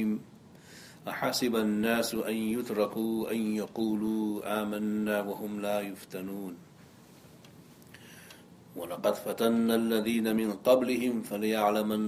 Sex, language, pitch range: male, English, 90-110 Hz